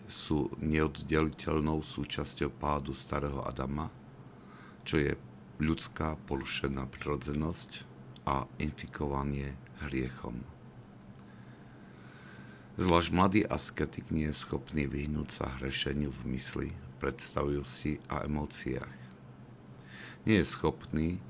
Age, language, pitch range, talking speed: 60-79, Slovak, 65-75 Hz, 85 wpm